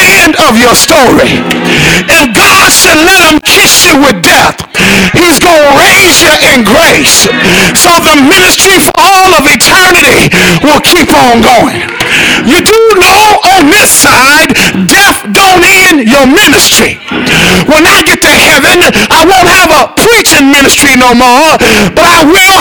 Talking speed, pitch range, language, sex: 150 wpm, 310-380 Hz, English, male